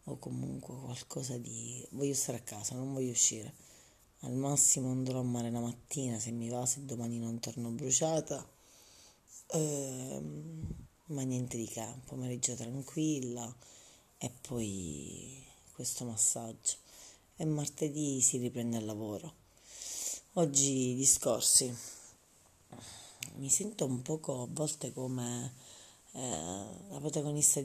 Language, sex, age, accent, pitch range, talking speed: Italian, female, 30-49, native, 120-140 Hz, 120 wpm